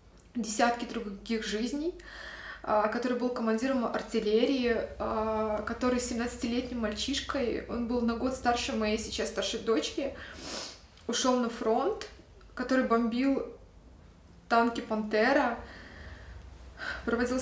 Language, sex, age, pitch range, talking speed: Russian, female, 20-39, 210-240 Hz, 95 wpm